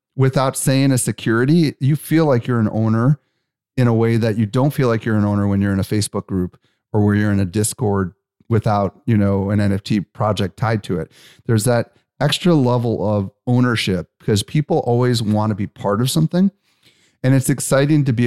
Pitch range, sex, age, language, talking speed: 105-130 Hz, male, 30-49, English, 205 wpm